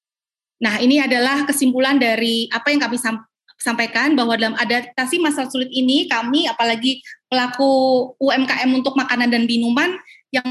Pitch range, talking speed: 235-280 Hz, 135 wpm